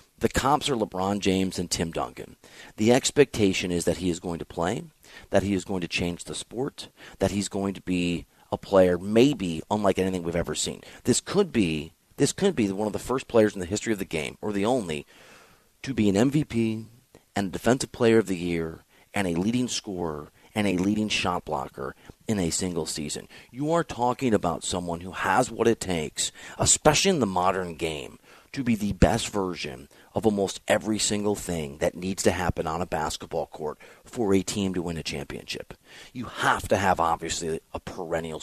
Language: English